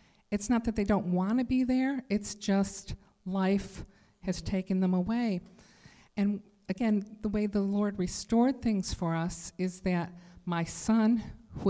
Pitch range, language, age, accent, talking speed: 180-210 Hz, English, 50-69, American, 160 wpm